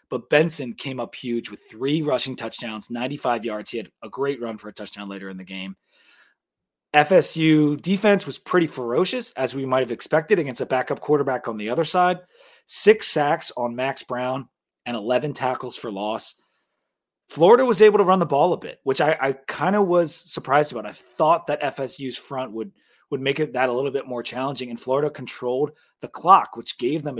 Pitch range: 125-175 Hz